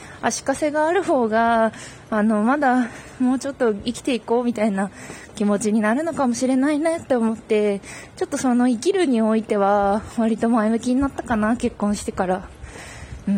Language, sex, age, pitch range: Japanese, female, 20-39, 210-265 Hz